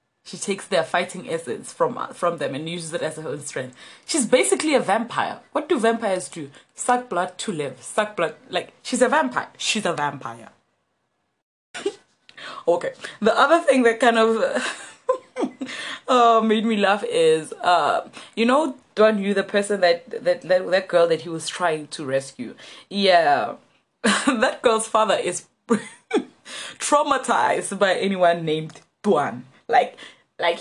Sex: female